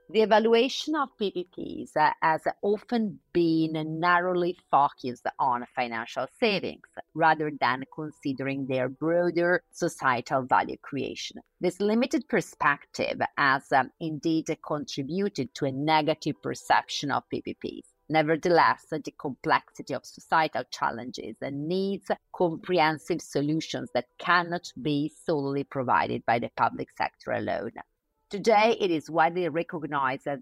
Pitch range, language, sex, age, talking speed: 140-180 Hz, Italian, female, 30-49, 110 wpm